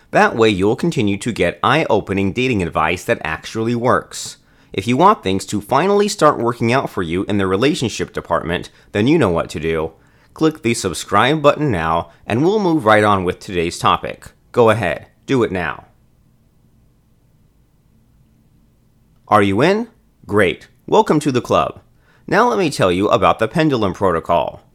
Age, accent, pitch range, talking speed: 30-49, American, 95-135 Hz, 165 wpm